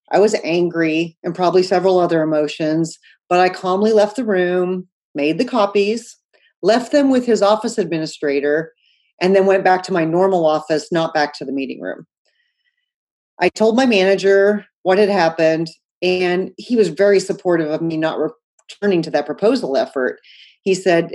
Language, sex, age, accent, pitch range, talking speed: English, female, 30-49, American, 160-195 Hz, 165 wpm